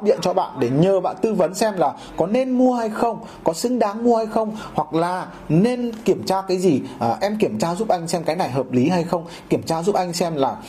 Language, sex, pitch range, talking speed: Vietnamese, male, 160-205 Hz, 260 wpm